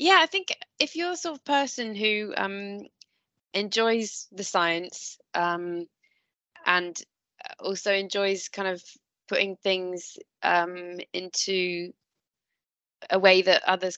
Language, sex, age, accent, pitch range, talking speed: English, female, 20-39, British, 160-185 Hz, 120 wpm